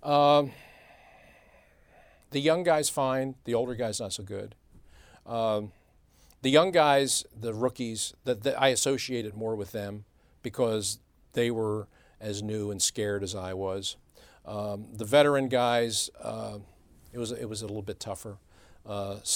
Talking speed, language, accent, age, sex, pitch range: 145 wpm, English, American, 50-69, male, 95-120 Hz